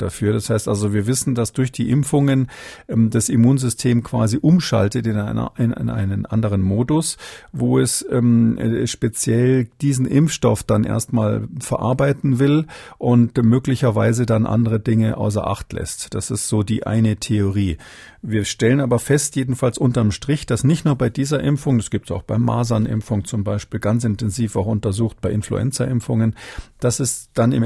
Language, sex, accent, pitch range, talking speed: German, male, German, 110-130 Hz, 165 wpm